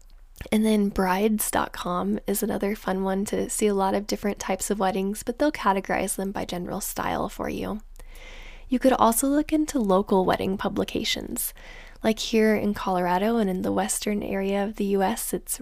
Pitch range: 195-245 Hz